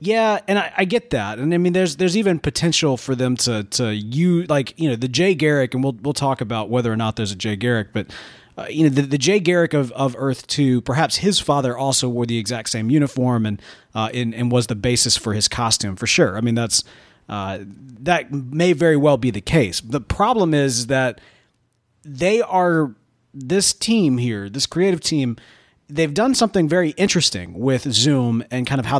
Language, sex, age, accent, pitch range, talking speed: English, male, 30-49, American, 115-160 Hz, 215 wpm